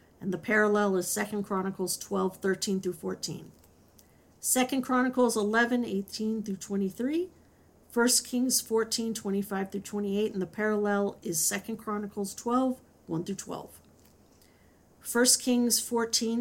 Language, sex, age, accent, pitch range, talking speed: English, female, 50-69, American, 195-230 Hz, 130 wpm